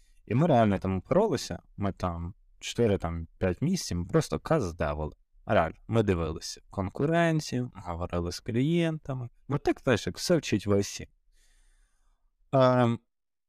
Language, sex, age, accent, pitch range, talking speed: Ukrainian, male, 20-39, native, 95-125 Hz, 125 wpm